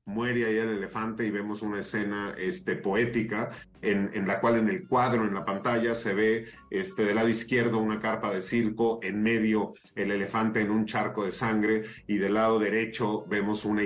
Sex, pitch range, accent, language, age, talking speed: male, 110-125 Hz, Mexican, Spanish, 40-59, 185 wpm